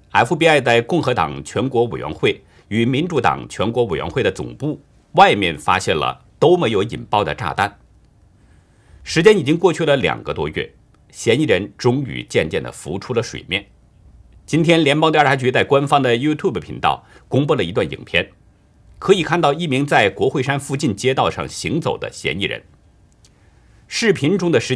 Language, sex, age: Chinese, male, 50-69